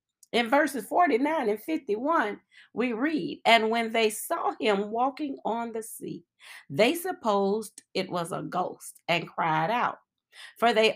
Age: 40-59